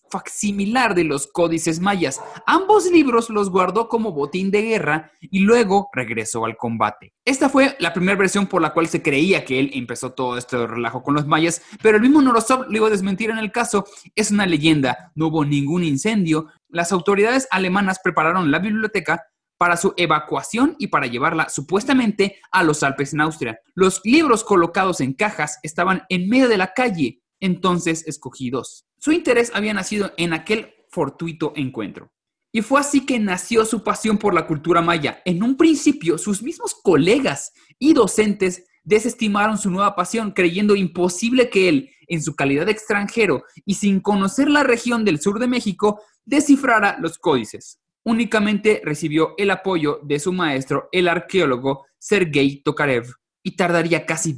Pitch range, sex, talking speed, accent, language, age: 160-220 Hz, male, 170 wpm, Mexican, Spanish, 30-49